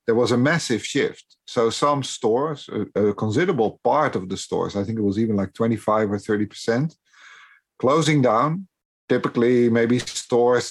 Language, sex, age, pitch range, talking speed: English, male, 50-69, 110-140 Hz, 160 wpm